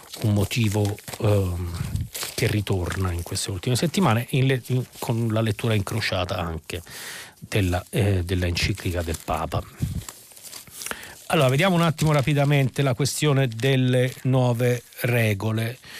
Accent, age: native, 40-59